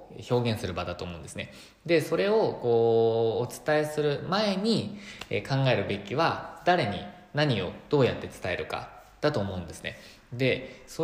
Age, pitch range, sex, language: 20-39, 100-145 Hz, male, Japanese